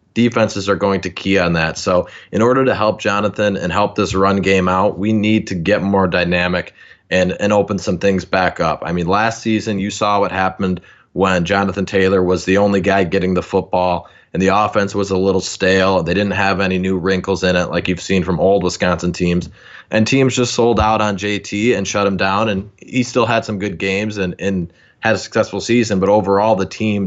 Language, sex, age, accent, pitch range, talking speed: English, male, 20-39, American, 95-105 Hz, 220 wpm